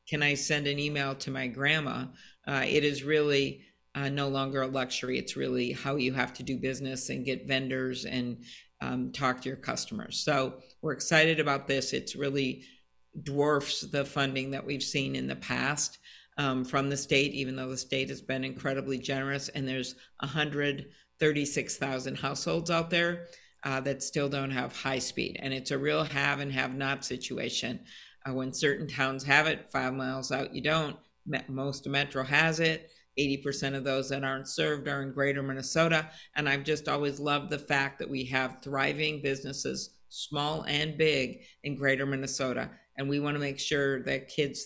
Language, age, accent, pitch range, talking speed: English, 50-69, American, 130-145 Hz, 180 wpm